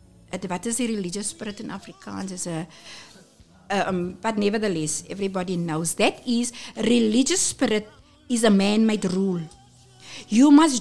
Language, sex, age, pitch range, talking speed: English, female, 50-69, 200-265 Hz, 135 wpm